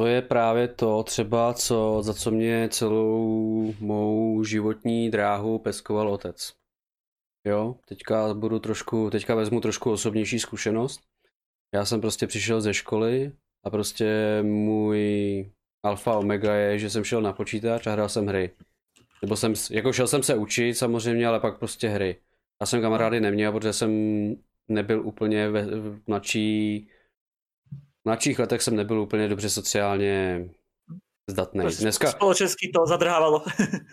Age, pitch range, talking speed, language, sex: 20-39, 105-120 Hz, 140 wpm, Czech, male